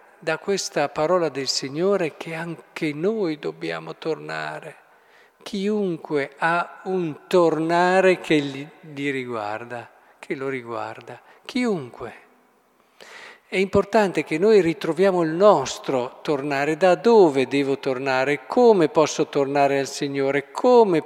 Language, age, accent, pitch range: Italian, 50-69, native, 130-175 Hz